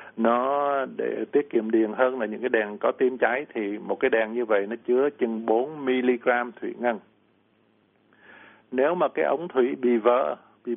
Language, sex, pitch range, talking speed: Vietnamese, male, 115-130 Hz, 185 wpm